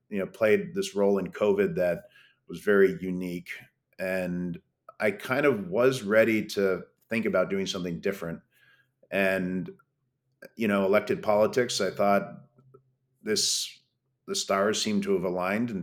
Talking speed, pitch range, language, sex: 145 wpm, 95-140 Hz, English, male